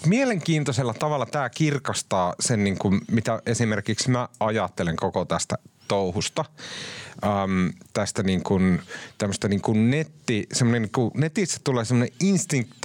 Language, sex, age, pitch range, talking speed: Finnish, male, 30-49, 105-150 Hz, 115 wpm